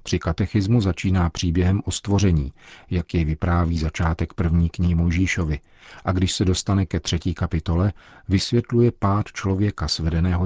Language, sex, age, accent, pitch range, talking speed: Czech, male, 40-59, native, 85-100 Hz, 145 wpm